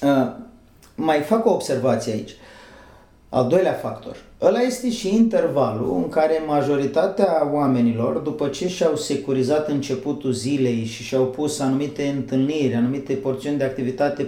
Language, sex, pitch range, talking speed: Romanian, male, 130-160 Hz, 135 wpm